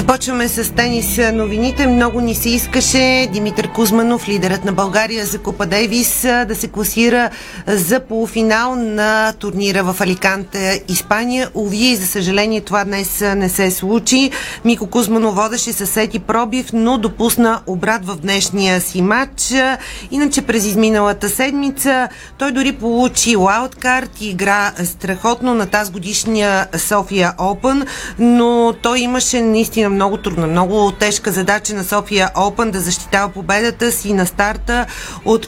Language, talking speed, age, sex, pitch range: Bulgarian, 135 wpm, 40-59, female, 195-235 Hz